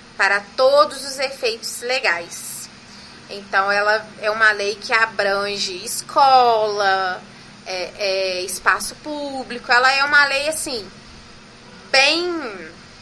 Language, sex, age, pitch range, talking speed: Portuguese, female, 20-39, 205-260 Hz, 95 wpm